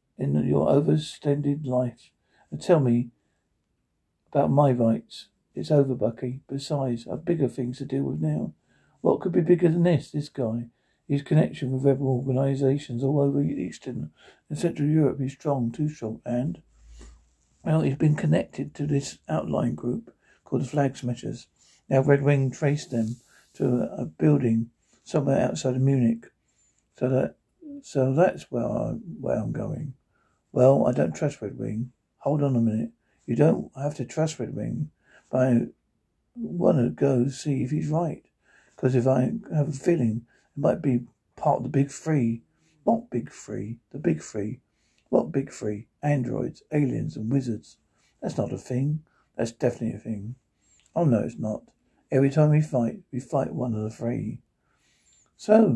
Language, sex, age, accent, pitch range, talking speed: English, male, 60-79, British, 115-145 Hz, 165 wpm